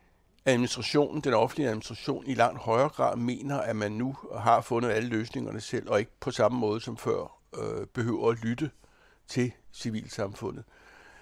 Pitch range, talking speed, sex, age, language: 115-140 Hz, 160 wpm, male, 60-79, Danish